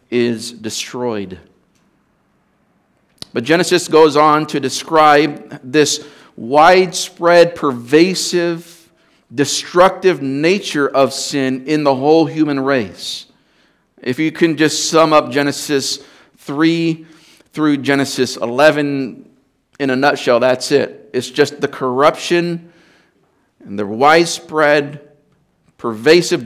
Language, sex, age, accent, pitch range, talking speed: English, male, 50-69, American, 120-155 Hz, 100 wpm